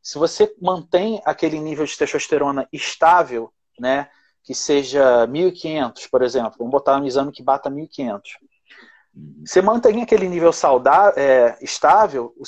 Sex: male